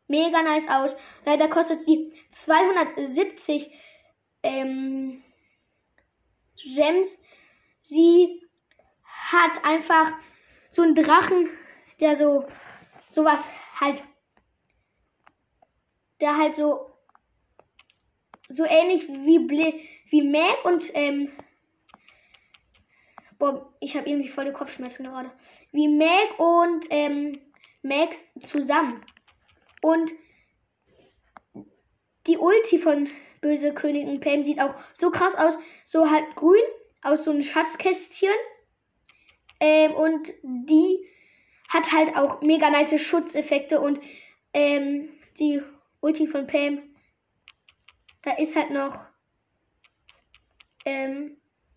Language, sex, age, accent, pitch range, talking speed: German, female, 10-29, German, 285-330 Hz, 95 wpm